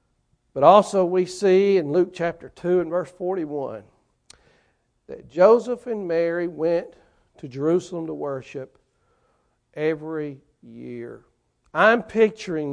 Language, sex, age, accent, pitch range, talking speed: English, male, 60-79, American, 180-235 Hz, 115 wpm